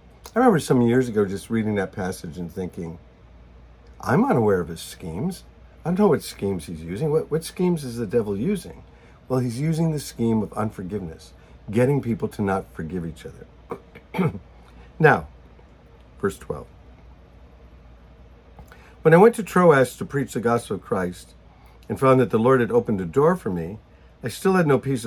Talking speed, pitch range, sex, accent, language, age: 175 wpm, 90-140 Hz, male, American, English, 50-69